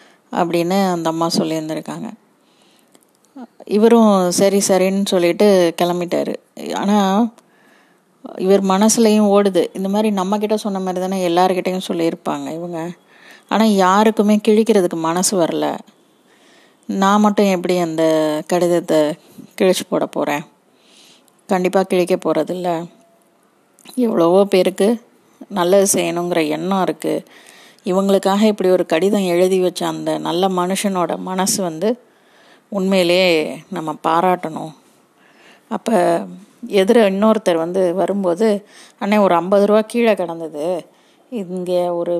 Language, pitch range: Tamil, 175-210 Hz